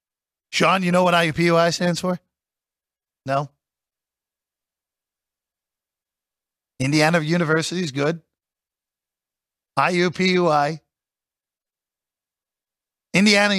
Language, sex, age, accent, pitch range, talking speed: English, male, 40-59, American, 130-180 Hz, 60 wpm